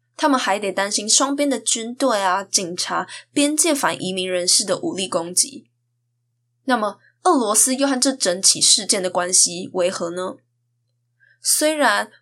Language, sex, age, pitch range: Chinese, female, 10-29, 180-260 Hz